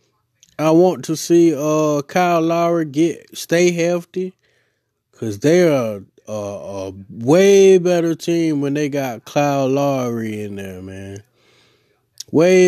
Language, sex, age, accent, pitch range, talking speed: English, male, 20-39, American, 125-170 Hz, 130 wpm